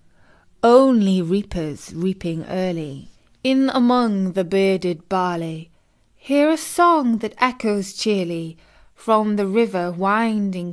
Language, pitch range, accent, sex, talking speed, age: English, 180-230 Hz, British, female, 105 wpm, 30-49